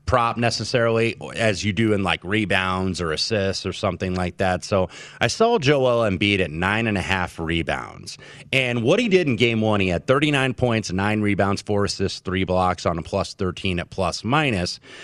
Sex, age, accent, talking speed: male, 30-49, American, 195 wpm